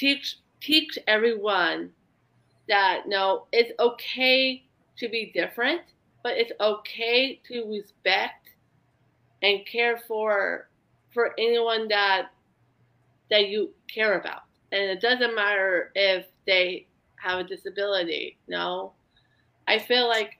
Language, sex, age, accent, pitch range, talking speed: English, female, 30-49, American, 190-245 Hz, 125 wpm